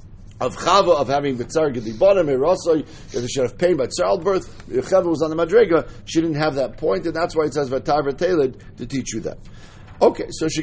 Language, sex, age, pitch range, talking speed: English, male, 50-69, 130-190 Hz, 230 wpm